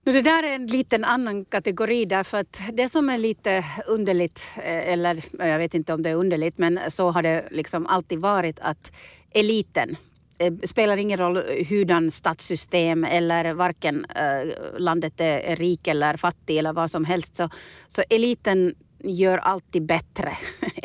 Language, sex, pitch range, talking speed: Swedish, female, 165-200 Hz, 160 wpm